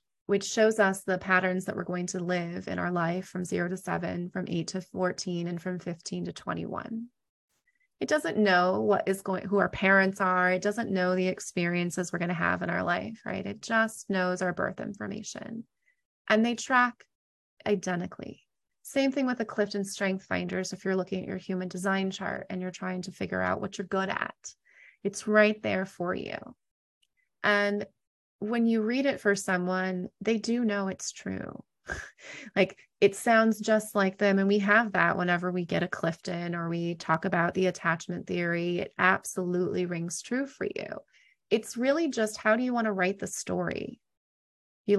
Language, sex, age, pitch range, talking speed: English, female, 30-49, 180-215 Hz, 190 wpm